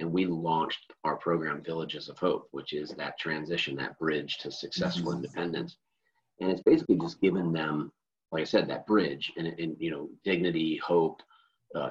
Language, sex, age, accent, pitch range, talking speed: English, male, 30-49, American, 80-100 Hz, 175 wpm